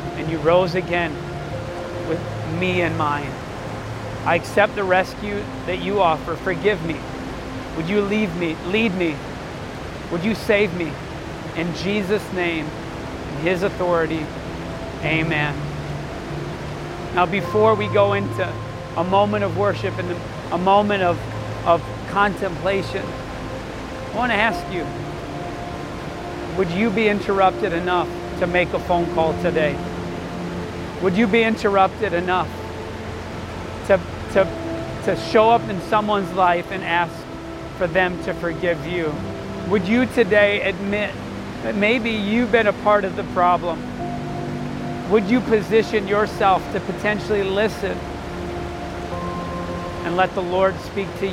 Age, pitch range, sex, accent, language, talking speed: 40-59, 150-200 Hz, male, American, English, 130 wpm